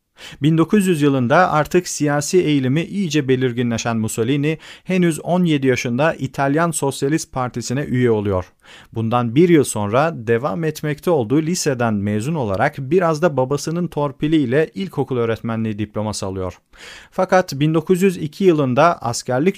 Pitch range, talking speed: 115-160 Hz, 115 wpm